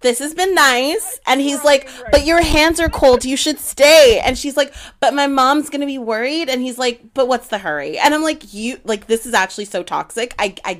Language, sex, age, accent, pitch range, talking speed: English, female, 20-39, American, 185-255 Hz, 240 wpm